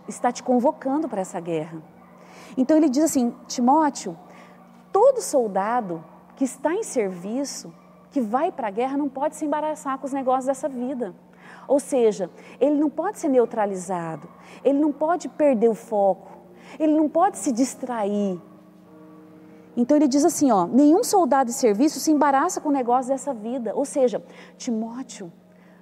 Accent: Brazilian